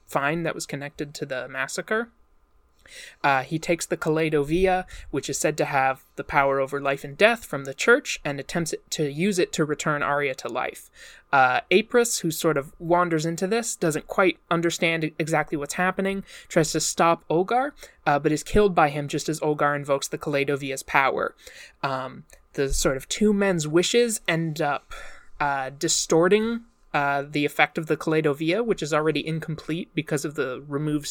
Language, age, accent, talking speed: English, 20-39, American, 180 wpm